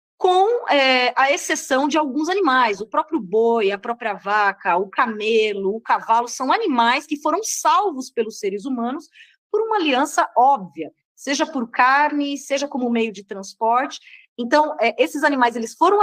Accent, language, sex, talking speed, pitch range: Brazilian, Portuguese, female, 150 wpm, 220-305 Hz